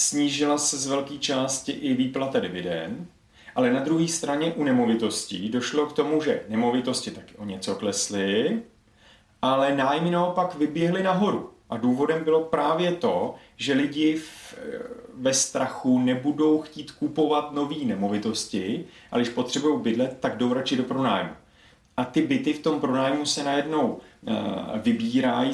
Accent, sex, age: native, male, 30-49